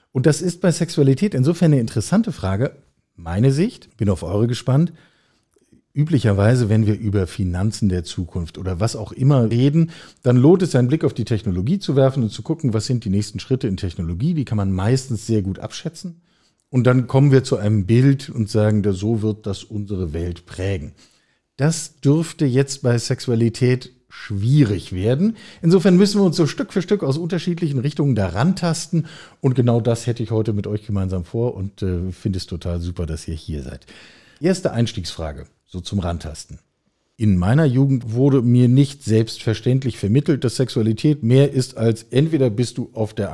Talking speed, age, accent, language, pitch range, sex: 185 wpm, 50-69, German, German, 105-140 Hz, male